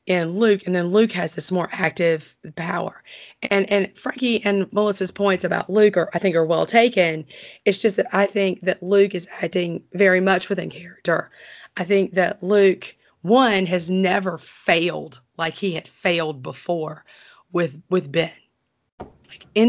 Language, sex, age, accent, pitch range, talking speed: English, female, 40-59, American, 175-205 Hz, 170 wpm